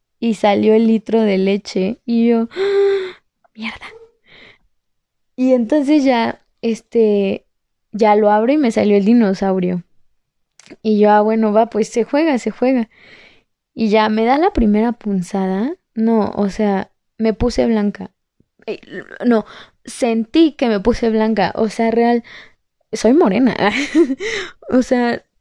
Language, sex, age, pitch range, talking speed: Spanish, female, 20-39, 215-260 Hz, 135 wpm